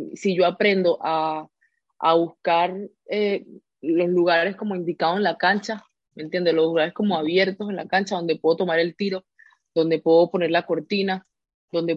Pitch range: 165-195 Hz